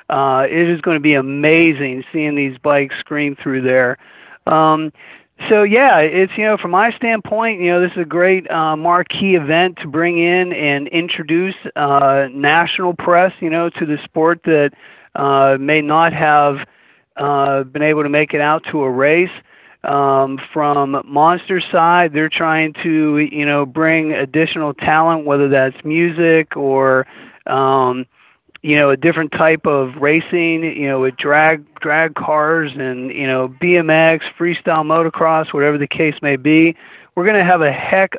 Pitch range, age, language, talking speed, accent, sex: 140-170 Hz, 40-59, English, 165 wpm, American, male